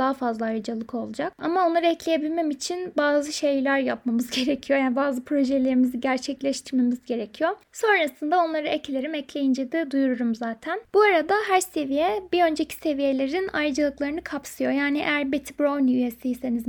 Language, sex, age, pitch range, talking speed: Turkish, female, 20-39, 260-325 Hz, 135 wpm